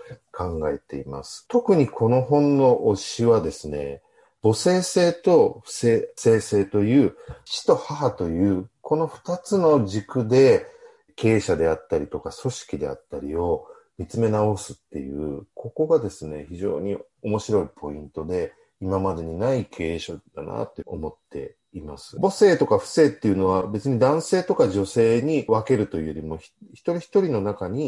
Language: Japanese